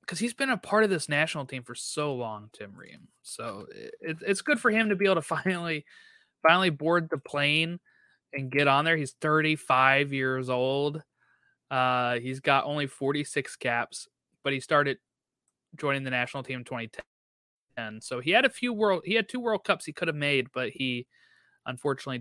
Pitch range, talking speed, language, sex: 130-175 Hz, 190 wpm, English, male